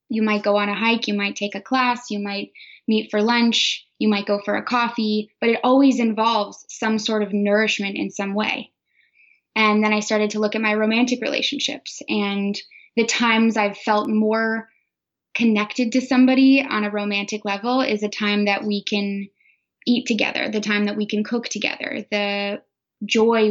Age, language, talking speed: 10-29, English, 185 wpm